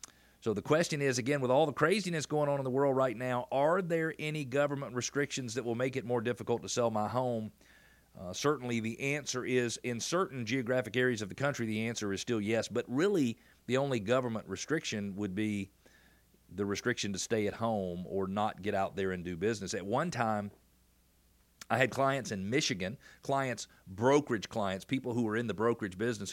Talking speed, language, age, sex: 200 wpm, English, 40-59, male